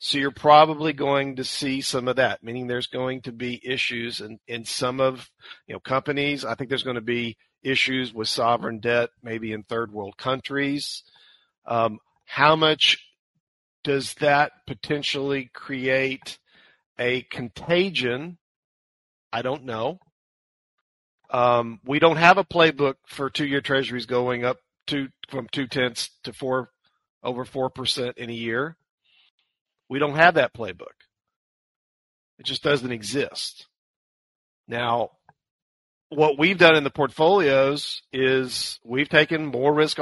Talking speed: 140 wpm